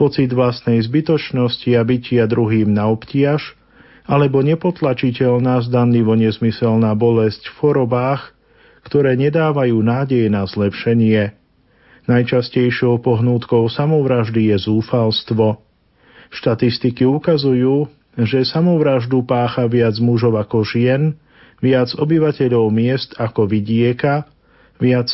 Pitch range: 115-135 Hz